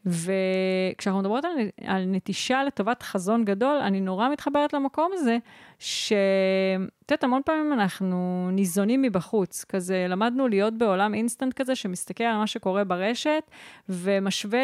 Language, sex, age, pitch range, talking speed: Hebrew, female, 30-49, 195-270 Hz, 130 wpm